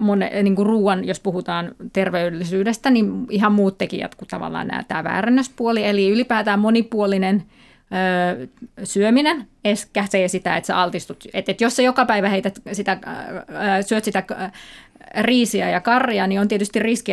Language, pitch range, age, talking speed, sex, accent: Finnish, 190-230 Hz, 30-49, 150 wpm, female, native